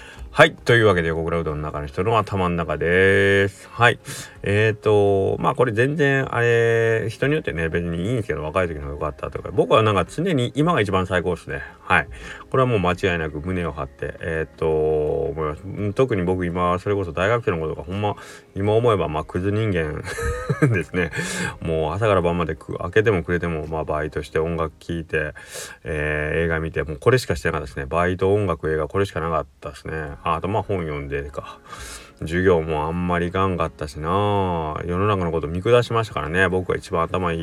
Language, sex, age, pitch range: Japanese, male, 30-49, 80-95 Hz